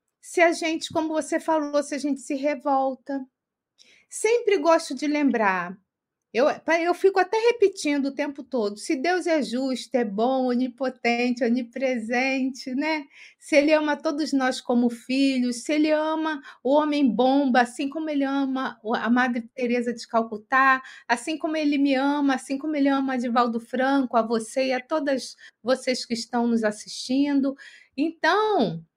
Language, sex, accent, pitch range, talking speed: Portuguese, female, Brazilian, 235-315 Hz, 160 wpm